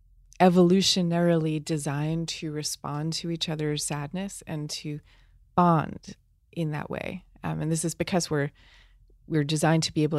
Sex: female